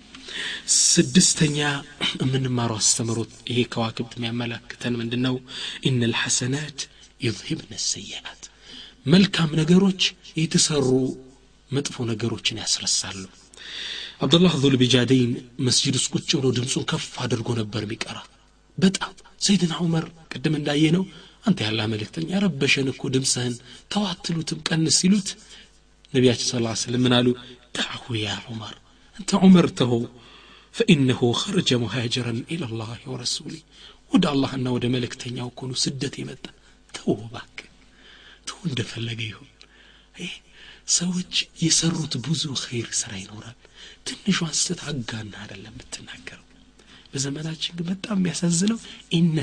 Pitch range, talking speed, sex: 120-170 Hz, 110 wpm, male